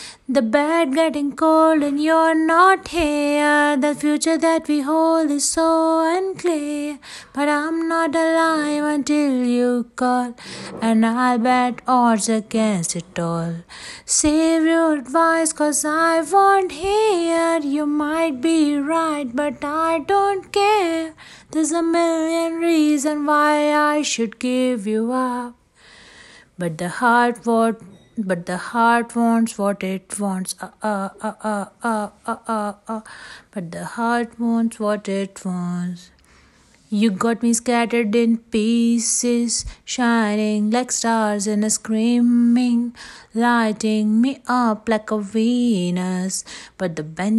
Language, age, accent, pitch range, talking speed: Hindi, 20-39, native, 220-305 Hz, 140 wpm